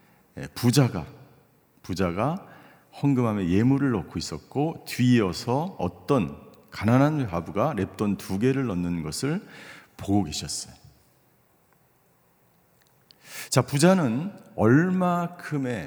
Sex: male